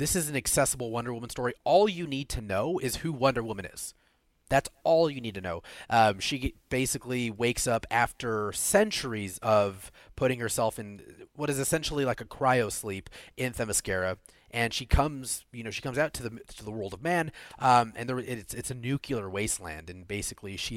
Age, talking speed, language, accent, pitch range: 30-49, 200 wpm, English, American, 100-135 Hz